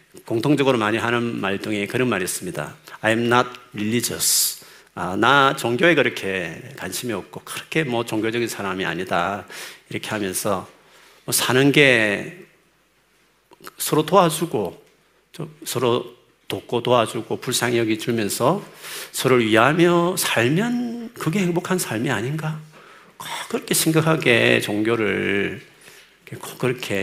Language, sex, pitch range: Korean, male, 110-155 Hz